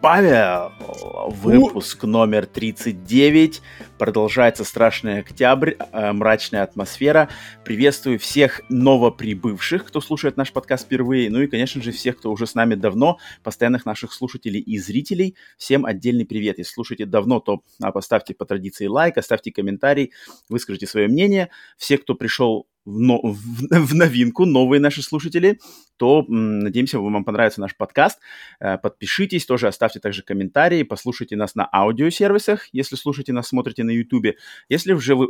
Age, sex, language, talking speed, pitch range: 20-39, male, Russian, 140 wpm, 110-145 Hz